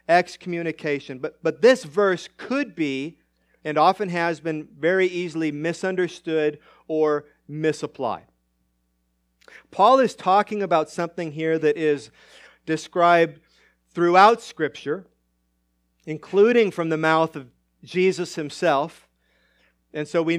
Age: 40-59